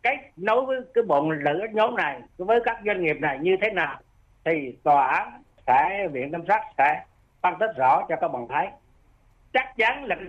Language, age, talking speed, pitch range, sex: Vietnamese, 60-79, 205 wpm, 150-210 Hz, male